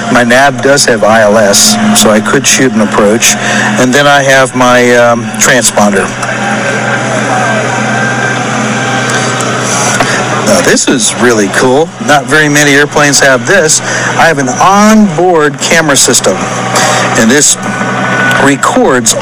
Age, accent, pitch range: 60-79, American, 130-170 Hz